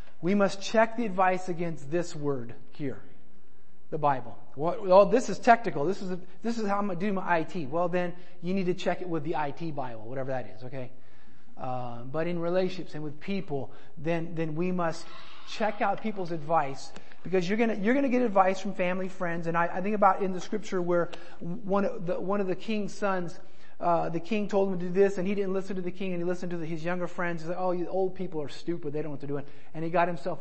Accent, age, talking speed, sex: American, 30-49, 255 wpm, male